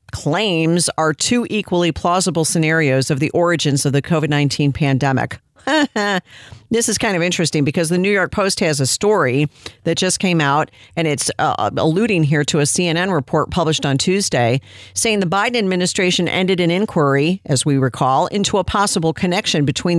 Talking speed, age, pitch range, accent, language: 170 wpm, 50-69, 145-190 Hz, American, English